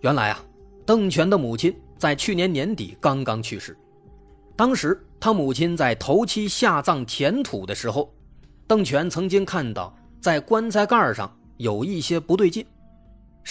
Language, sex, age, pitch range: Chinese, male, 30-49, 125-180 Hz